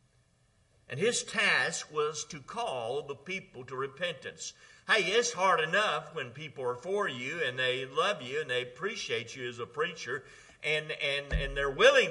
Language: English